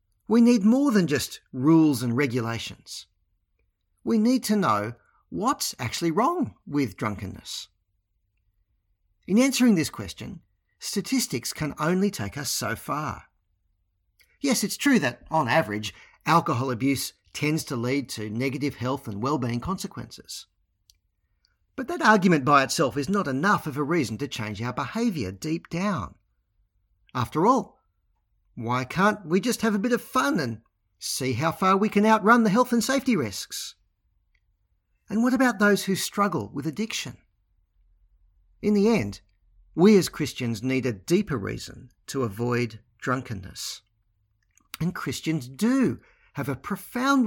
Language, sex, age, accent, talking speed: English, male, 50-69, Australian, 140 wpm